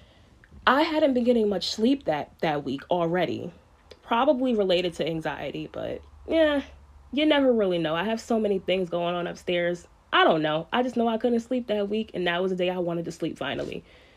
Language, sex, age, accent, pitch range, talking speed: English, female, 20-39, American, 175-260 Hz, 210 wpm